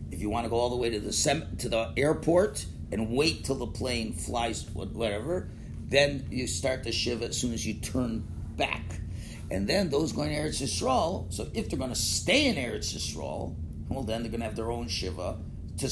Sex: male